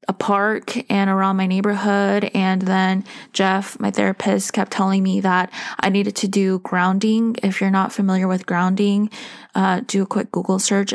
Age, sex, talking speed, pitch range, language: 10-29, female, 175 wpm, 190-220 Hz, English